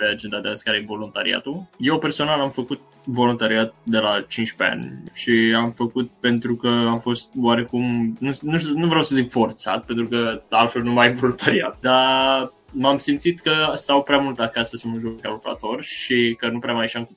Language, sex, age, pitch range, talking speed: Romanian, male, 20-39, 115-130 Hz, 205 wpm